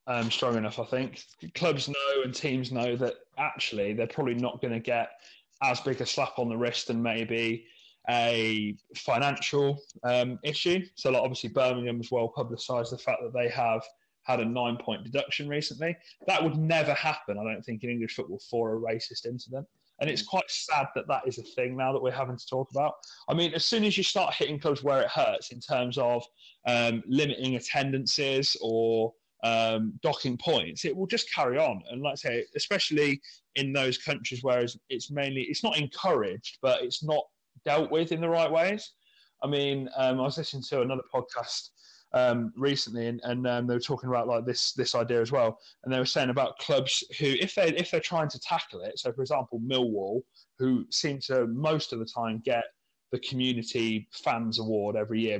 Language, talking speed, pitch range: English, 205 wpm, 115-145 Hz